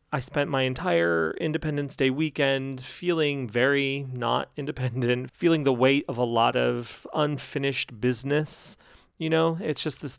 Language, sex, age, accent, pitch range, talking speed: English, male, 30-49, American, 125-165 Hz, 145 wpm